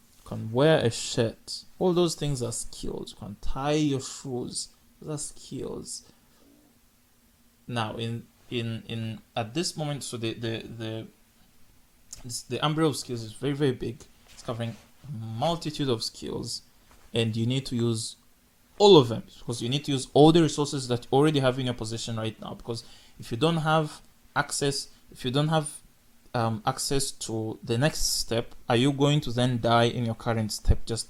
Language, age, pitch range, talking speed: English, 20-39, 115-140 Hz, 185 wpm